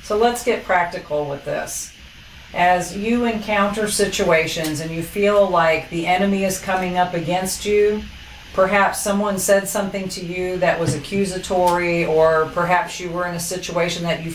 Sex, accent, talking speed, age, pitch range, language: female, American, 165 wpm, 40-59, 165-200 Hz, English